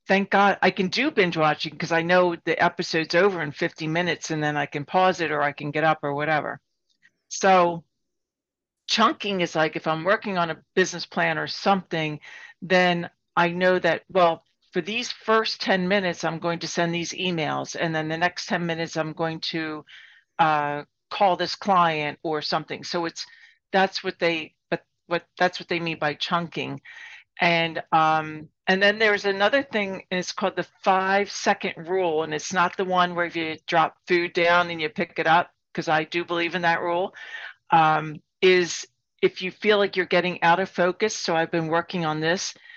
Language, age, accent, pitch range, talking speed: English, 50-69, American, 160-185 Hz, 195 wpm